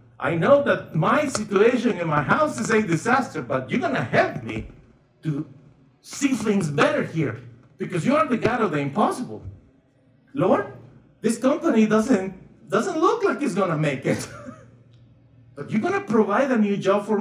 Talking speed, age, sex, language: 165 wpm, 50-69, male, English